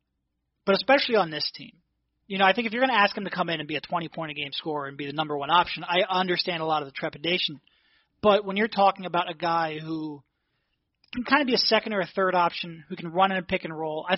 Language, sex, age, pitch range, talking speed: English, male, 30-49, 160-200 Hz, 265 wpm